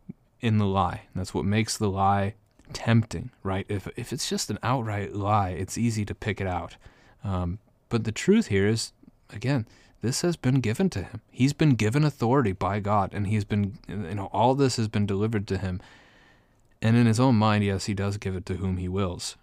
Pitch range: 95-115 Hz